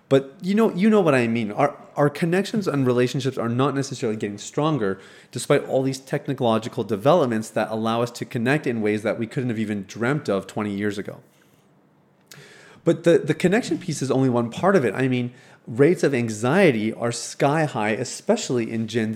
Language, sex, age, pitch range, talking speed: English, male, 30-49, 115-160 Hz, 195 wpm